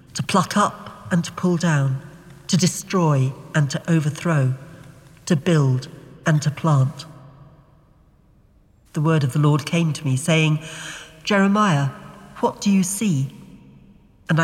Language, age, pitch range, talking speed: English, 50-69, 145-170 Hz, 135 wpm